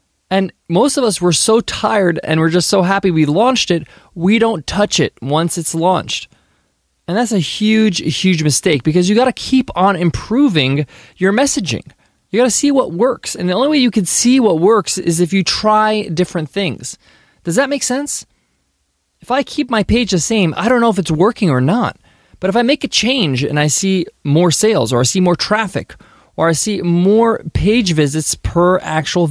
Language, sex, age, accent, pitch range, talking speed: English, male, 20-39, American, 160-220 Hz, 205 wpm